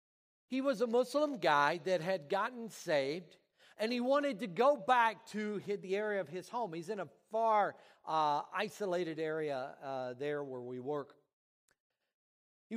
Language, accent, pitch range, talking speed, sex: English, American, 175-240 Hz, 160 wpm, male